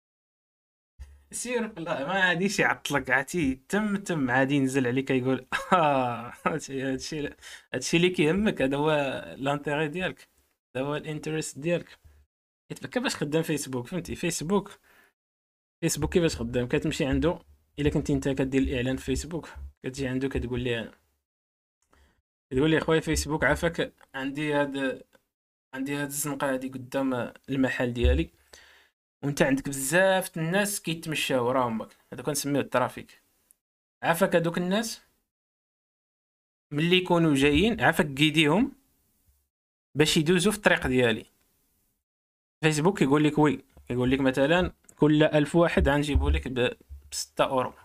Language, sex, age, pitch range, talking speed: Arabic, male, 20-39, 125-165 Hz, 120 wpm